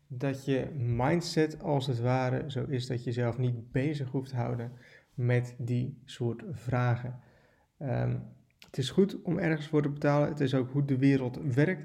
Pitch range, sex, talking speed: 120-140 Hz, male, 175 wpm